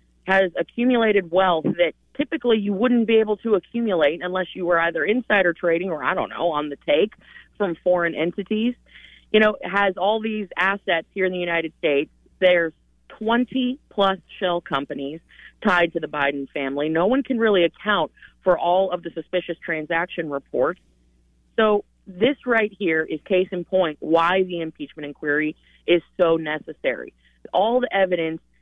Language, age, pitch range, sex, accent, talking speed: English, 30-49, 160-210 Hz, female, American, 160 wpm